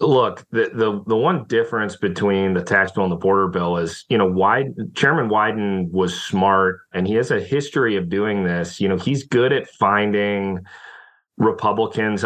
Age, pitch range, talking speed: 30-49, 95-125 Hz, 180 wpm